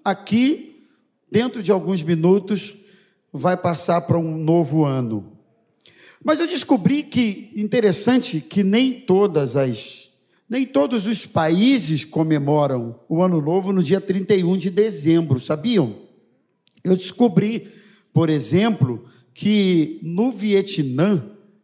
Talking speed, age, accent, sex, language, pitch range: 115 wpm, 50-69, Brazilian, male, Portuguese, 160-215 Hz